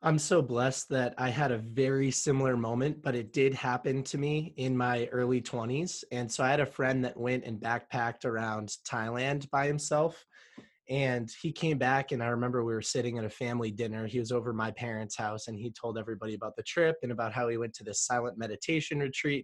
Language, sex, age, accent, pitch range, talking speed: English, male, 20-39, American, 115-140 Hz, 220 wpm